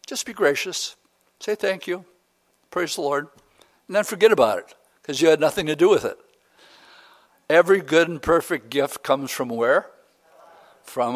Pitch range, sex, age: 125-170 Hz, male, 60-79